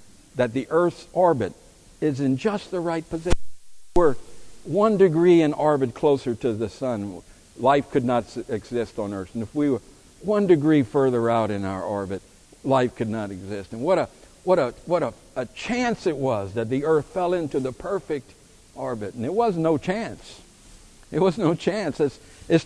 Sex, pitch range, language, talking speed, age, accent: male, 105-160 Hz, English, 195 wpm, 60-79, American